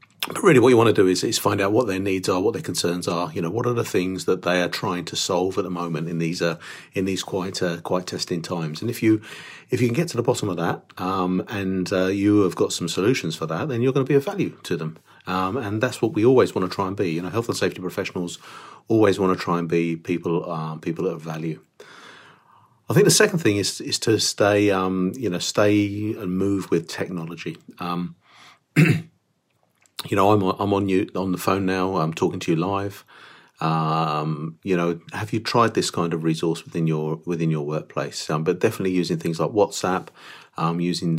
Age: 40-59